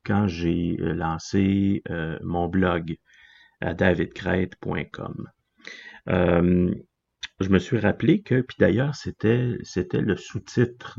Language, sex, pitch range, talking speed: French, male, 90-105 Hz, 110 wpm